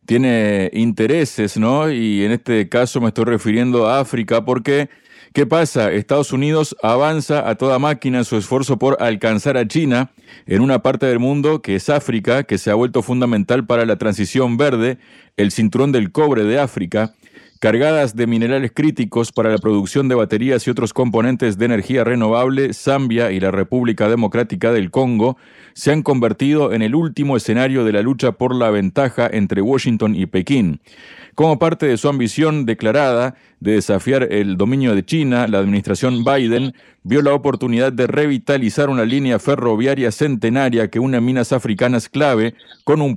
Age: 40-59